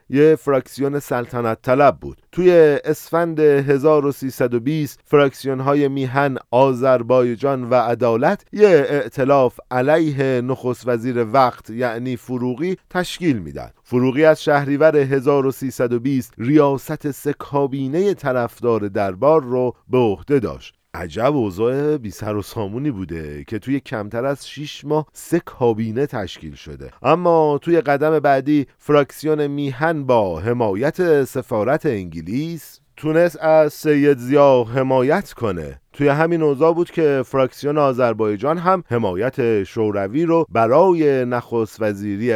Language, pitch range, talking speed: Persian, 115-150 Hz, 115 wpm